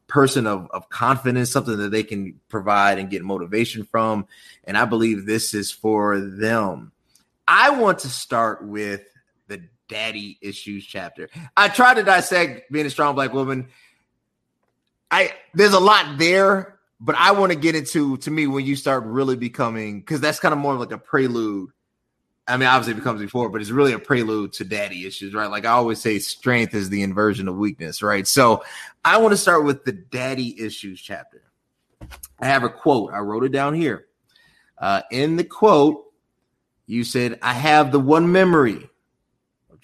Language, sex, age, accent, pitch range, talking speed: English, male, 30-49, American, 105-145 Hz, 185 wpm